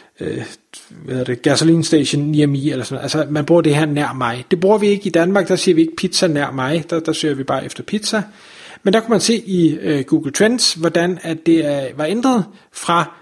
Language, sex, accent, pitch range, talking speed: Danish, male, native, 155-190 Hz, 225 wpm